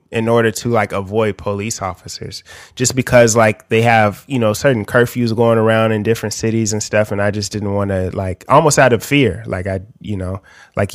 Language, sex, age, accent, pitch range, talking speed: English, male, 20-39, American, 95-115 Hz, 215 wpm